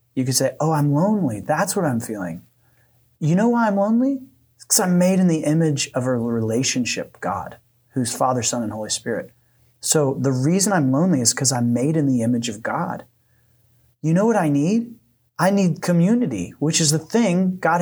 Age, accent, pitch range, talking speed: 30-49, American, 120-165 Hz, 200 wpm